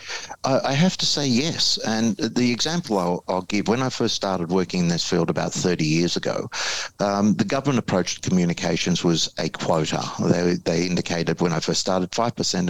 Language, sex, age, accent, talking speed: English, male, 50-69, Australian, 195 wpm